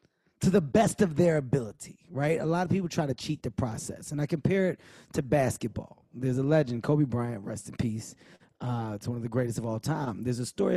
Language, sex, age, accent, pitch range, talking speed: English, male, 20-39, American, 135-185 Hz, 235 wpm